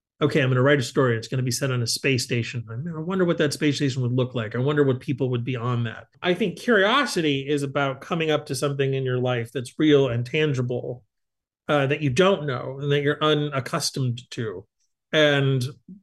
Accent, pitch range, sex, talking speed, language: American, 125-155 Hz, male, 225 wpm, English